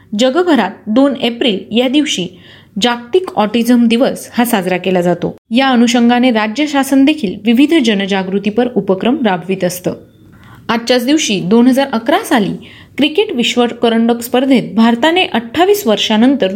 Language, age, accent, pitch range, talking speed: Marathi, 30-49, native, 195-255 Hz, 115 wpm